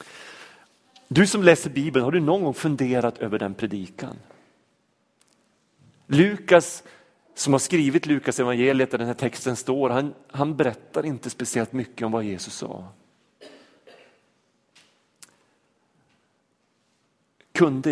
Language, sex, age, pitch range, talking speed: Swedish, male, 40-59, 110-145 Hz, 115 wpm